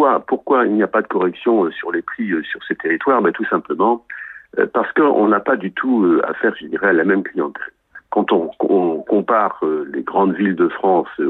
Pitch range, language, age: 275-385 Hz, French, 60-79